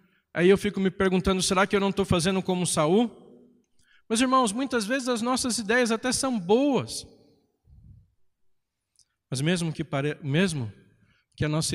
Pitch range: 130-195 Hz